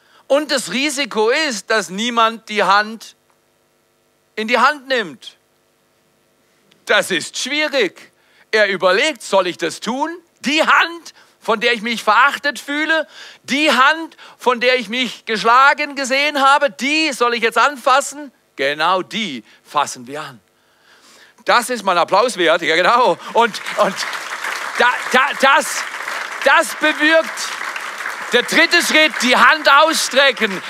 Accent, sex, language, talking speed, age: German, male, German, 135 wpm, 40-59